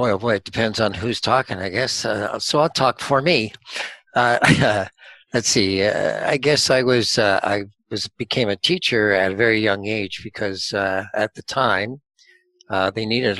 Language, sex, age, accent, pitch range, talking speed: English, male, 60-79, American, 95-120 Hz, 195 wpm